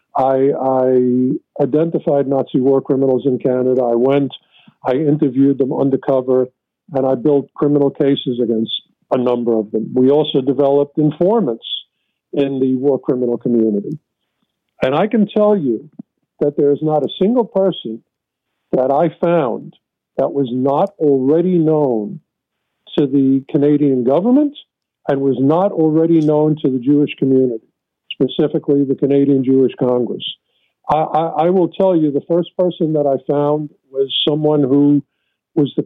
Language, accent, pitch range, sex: English, American, 130-160 Hz, male